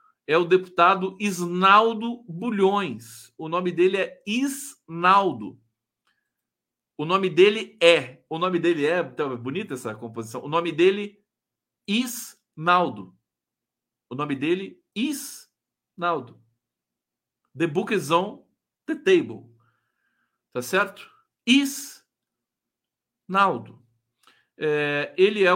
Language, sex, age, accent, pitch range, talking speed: Portuguese, male, 50-69, Brazilian, 165-220 Hz, 100 wpm